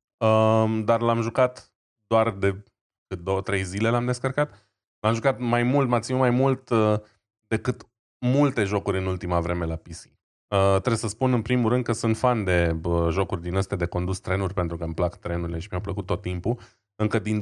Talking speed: 205 wpm